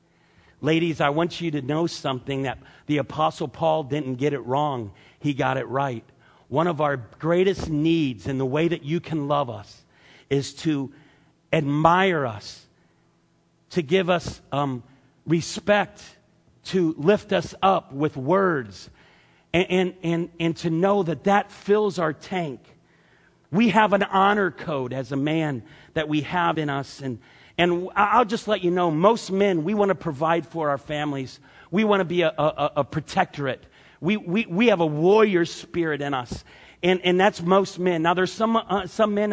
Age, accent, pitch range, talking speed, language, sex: 50-69, American, 150-195 Hz, 175 wpm, English, male